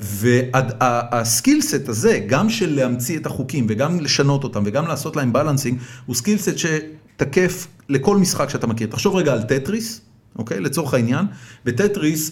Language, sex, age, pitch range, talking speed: Hebrew, male, 40-59, 120-175 Hz, 140 wpm